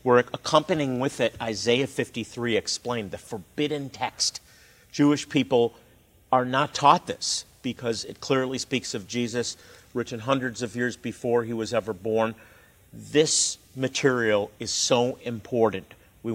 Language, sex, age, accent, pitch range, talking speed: English, male, 50-69, American, 110-130 Hz, 135 wpm